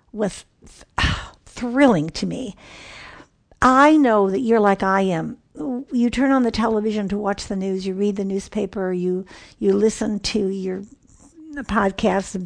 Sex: female